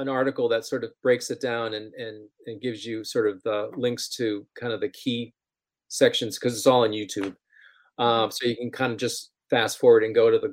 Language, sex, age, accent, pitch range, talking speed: English, male, 40-59, American, 115-150 Hz, 235 wpm